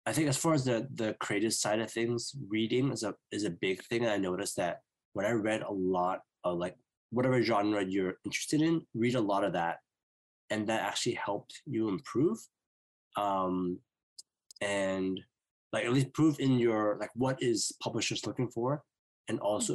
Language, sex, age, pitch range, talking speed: English, male, 20-39, 95-130 Hz, 185 wpm